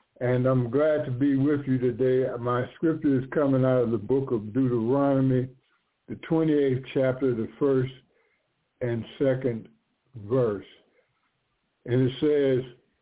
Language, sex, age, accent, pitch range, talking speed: English, male, 60-79, American, 120-140 Hz, 135 wpm